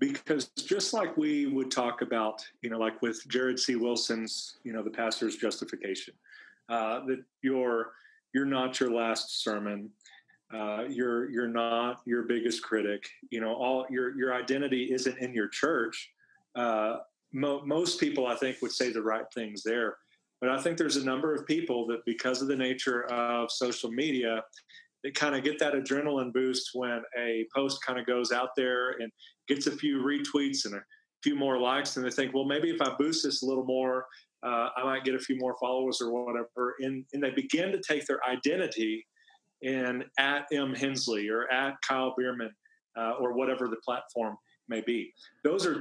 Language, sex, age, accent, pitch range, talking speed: English, male, 40-59, American, 120-140 Hz, 185 wpm